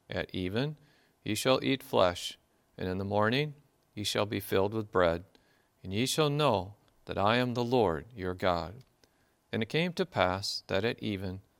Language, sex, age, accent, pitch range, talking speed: English, male, 40-59, American, 95-130 Hz, 180 wpm